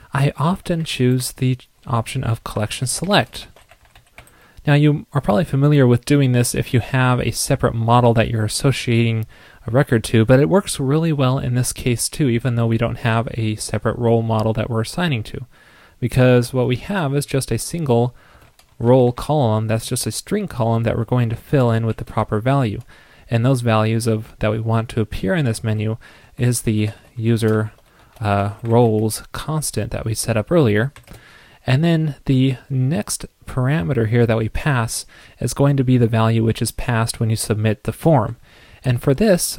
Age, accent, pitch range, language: 20-39, American, 110-135 Hz, English